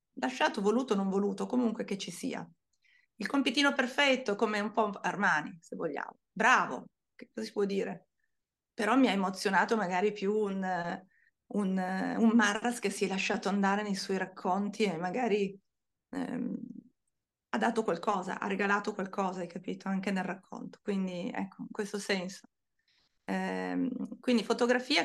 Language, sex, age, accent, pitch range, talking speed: Italian, female, 30-49, native, 195-235 Hz, 155 wpm